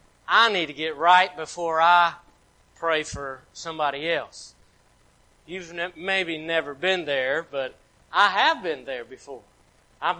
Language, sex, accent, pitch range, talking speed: English, male, American, 180-235 Hz, 135 wpm